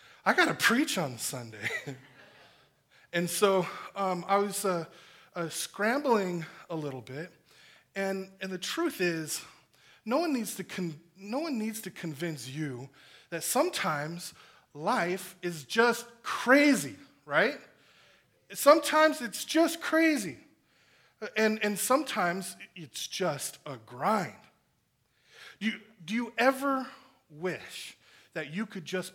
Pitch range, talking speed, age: 165-225 Hz, 125 wpm, 20-39